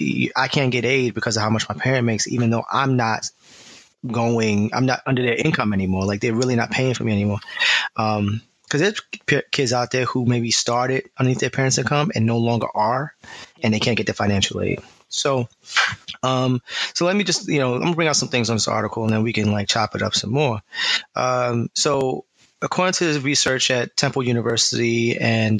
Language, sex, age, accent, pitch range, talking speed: English, male, 20-39, American, 115-140 Hz, 215 wpm